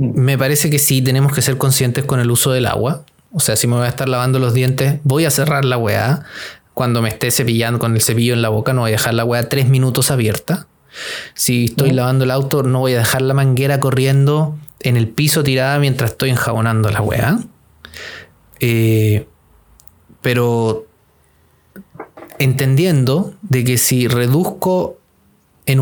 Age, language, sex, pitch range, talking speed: 30-49, Spanish, male, 120-155 Hz, 175 wpm